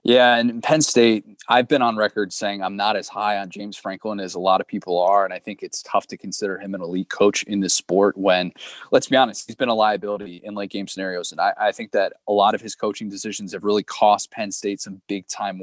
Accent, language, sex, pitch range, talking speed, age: American, English, male, 95-115 Hz, 250 wpm, 20-39